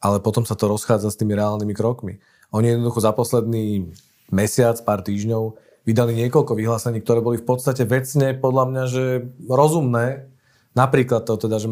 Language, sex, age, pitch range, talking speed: Slovak, male, 40-59, 110-125 Hz, 165 wpm